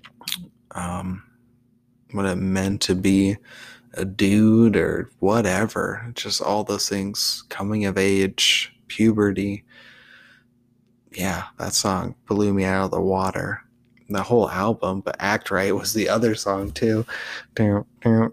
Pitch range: 100-120 Hz